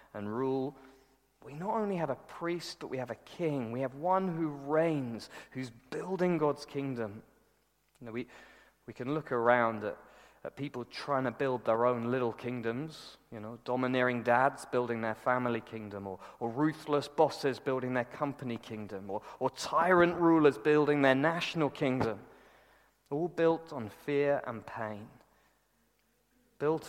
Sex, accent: male, British